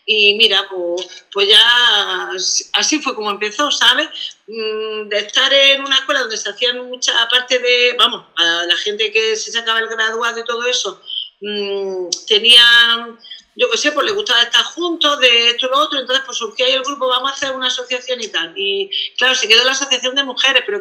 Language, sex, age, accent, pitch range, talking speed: Spanish, female, 40-59, Spanish, 220-270 Hz, 200 wpm